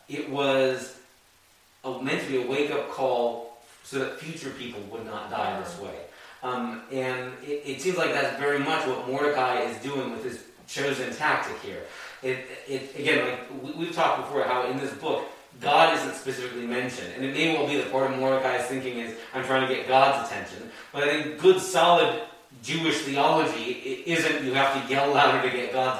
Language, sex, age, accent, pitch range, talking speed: English, male, 30-49, American, 125-145 Hz, 190 wpm